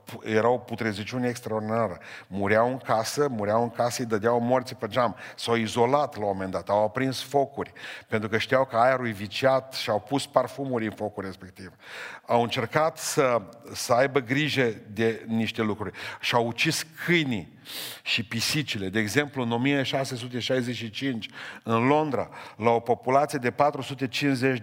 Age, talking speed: 50-69, 155 wpm